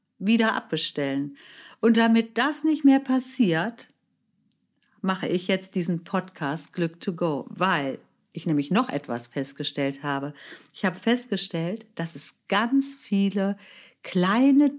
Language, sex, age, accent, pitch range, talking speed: German, female, 50-69, German, 170-240 Hz, 125 wpm